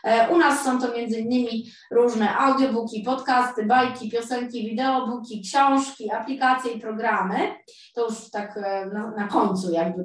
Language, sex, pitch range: Polish, female, 195-240 Hz